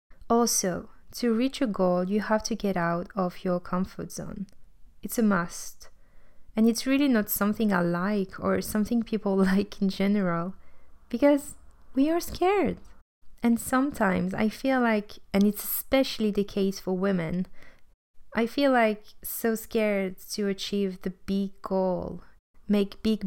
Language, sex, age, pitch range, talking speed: English, female, 20-39, 190-220 Hz, 150 wpm